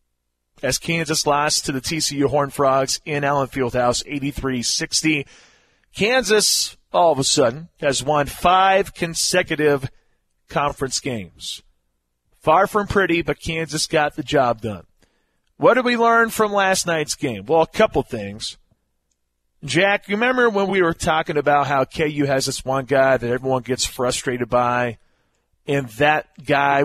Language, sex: English, male